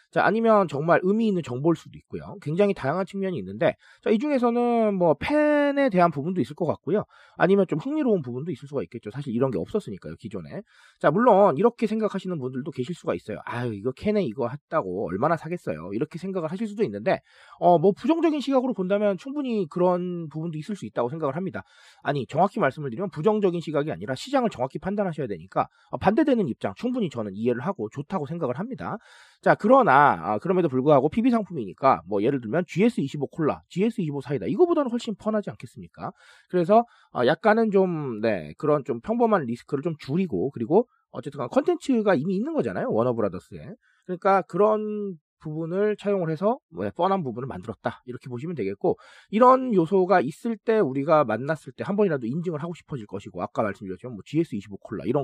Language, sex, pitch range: Korean, male, 140-215 Hz